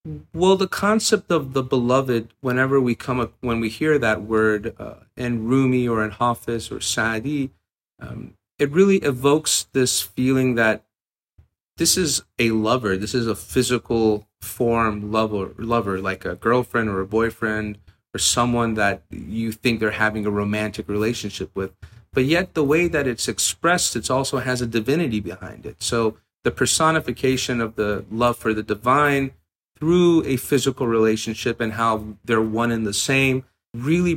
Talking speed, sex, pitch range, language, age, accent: 165 wpm, male, 110-130 Hz, English, 30-49, American